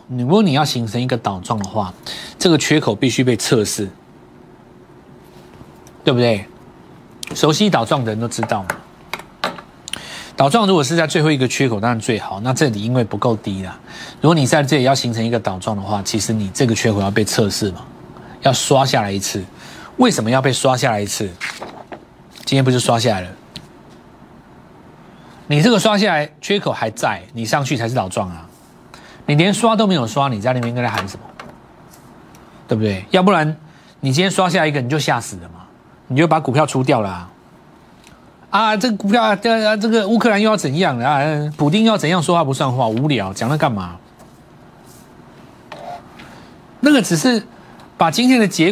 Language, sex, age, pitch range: Chinese, male, 30-49, 110-160 Hz